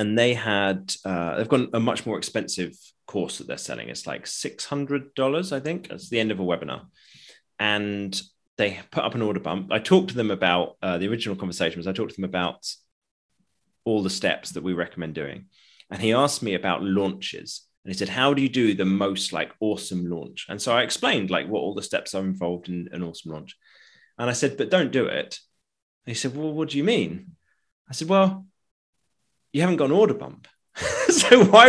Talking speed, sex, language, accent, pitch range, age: 220 wpm, male, English, British, 90-145 Hz, 30-49